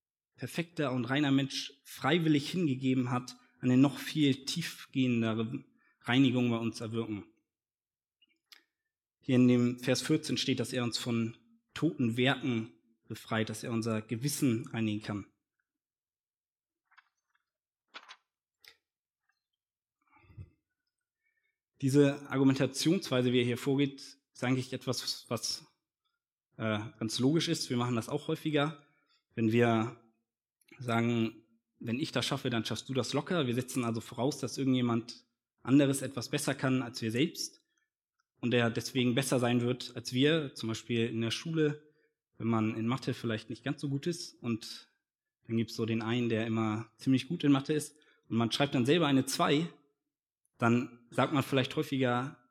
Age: 20-39